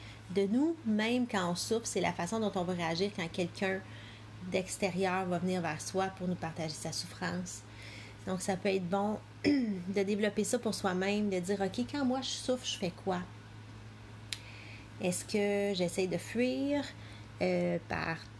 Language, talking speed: French, 170 wpm